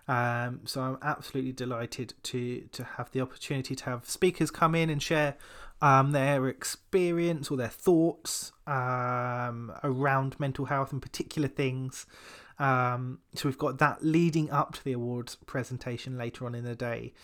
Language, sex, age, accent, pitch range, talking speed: English, male, 20-39, British, 130-150 Hz, 160 wpm